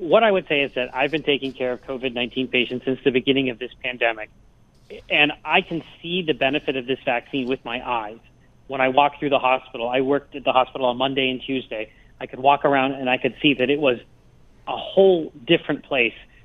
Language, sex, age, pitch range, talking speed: English, male, 30-49, 130-150 Hz, 225 wpm